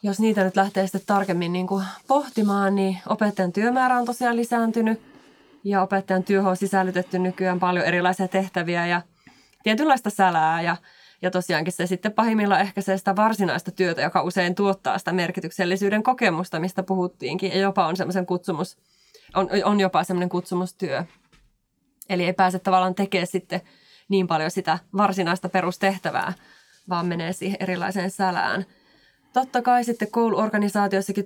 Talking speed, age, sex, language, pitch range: 135 wpm, 20-39, female, Finnish, 185-205 Hz